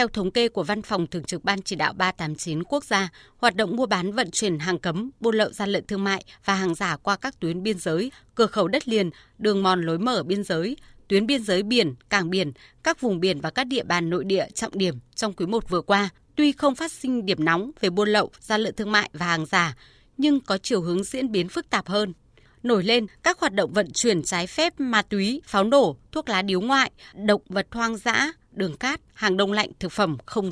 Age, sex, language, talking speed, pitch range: 20-39, female, Vietnamese, 240 wpm, 185-245 Hz